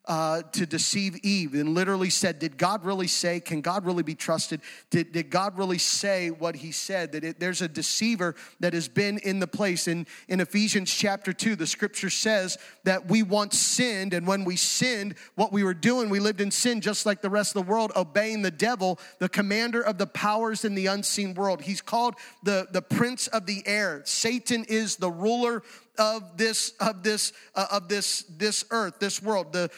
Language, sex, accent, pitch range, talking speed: English, male, American, 185-220 Hz, 205 wpm